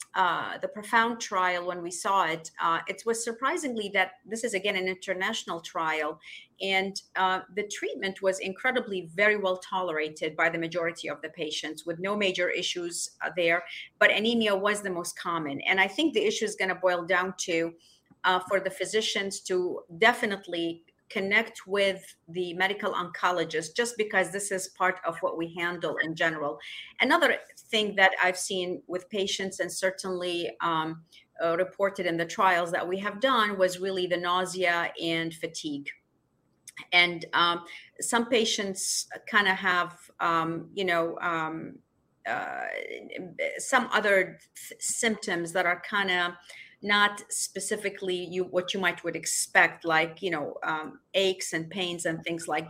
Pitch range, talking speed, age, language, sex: 170-200 Hz, 160 wpm, 40-59, English, female